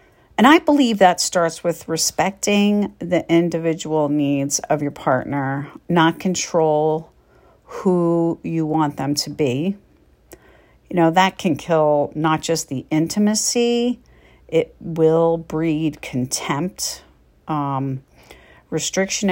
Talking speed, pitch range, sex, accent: 110 wpm, 155-195 Hz, female, American